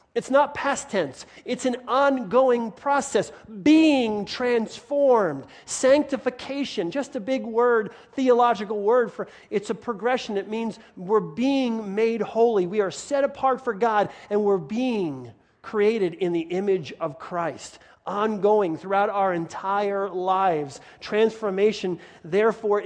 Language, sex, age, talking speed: English, male, 40-59, 130 wpm